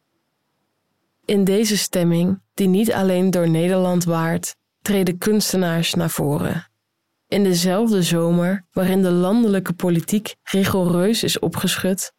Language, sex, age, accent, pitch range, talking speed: Dutch, female, 20-39, Dutch, 170-195 Hz, 115 wpm